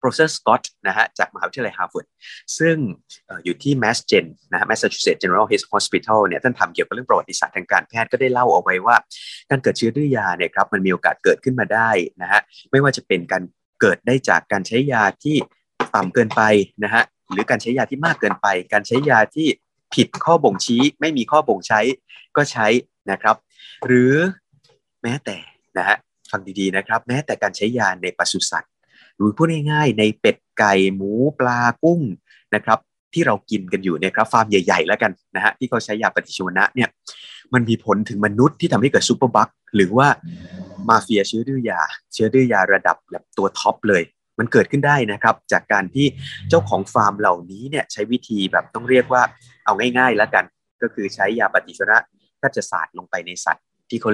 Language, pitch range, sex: Thai, 100-135 Hz, male